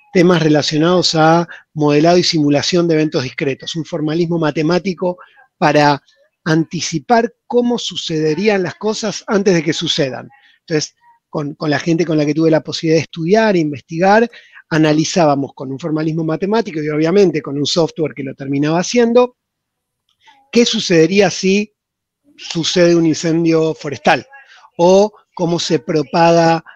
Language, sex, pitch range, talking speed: Spanish, male, 150-180 Hz, 140 wpm